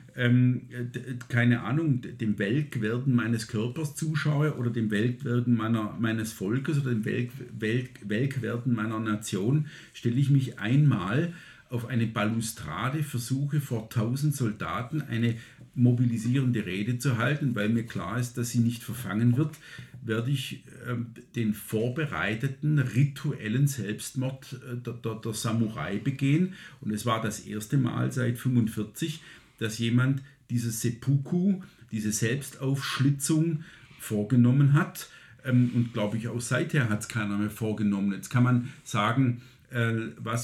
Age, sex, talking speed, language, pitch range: 50-69, male, 135 wpm, German, 115-135 Hz